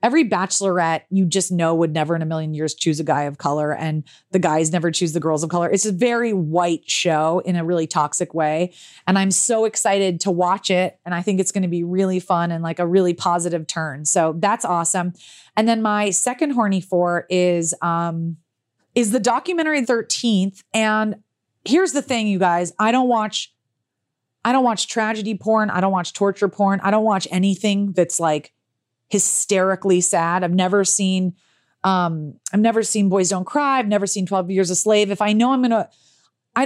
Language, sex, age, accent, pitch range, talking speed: English, female, 30-49, American, 170-210 Hz, 200 wpm